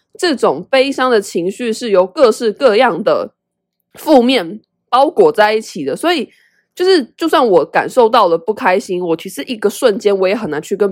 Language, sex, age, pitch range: Chinese, female, 20-39, 190-295 Hz